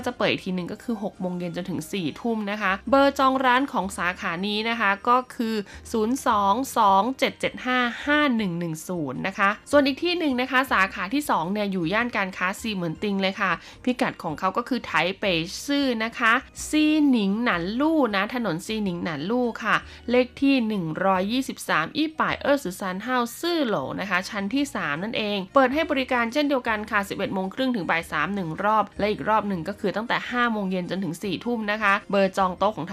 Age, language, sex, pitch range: 20-39, Thai, female, 190-240 Hz